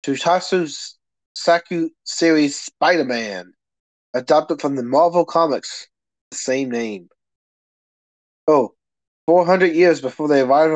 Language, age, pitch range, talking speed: English, 30-49, 125-175 Hz, 100 wpm